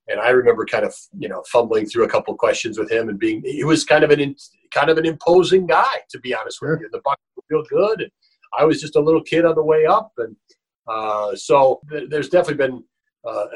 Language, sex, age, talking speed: English, male, 50-69, 245 wpm